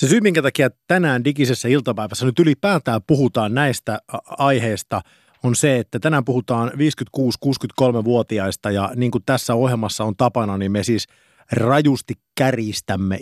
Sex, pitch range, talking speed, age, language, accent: male, 110-140 Hz, 135 wpm, 50-69, Finnish, native